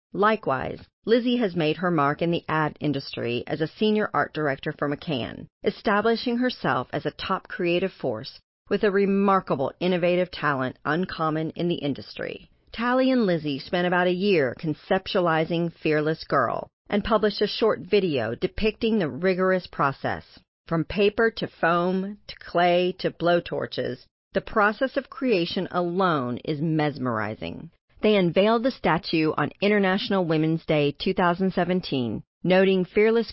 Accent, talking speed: American, 140 wpm